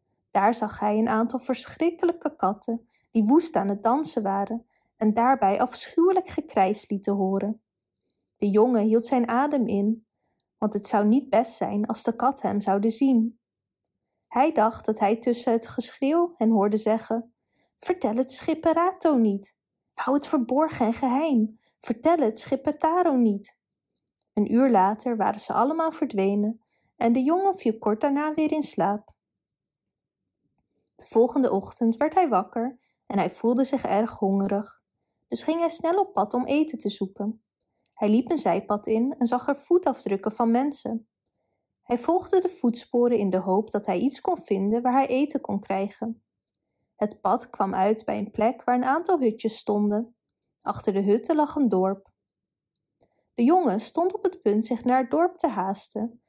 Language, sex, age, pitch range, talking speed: Dutch, female, 20-39, 210-275 Hz, 165 wpm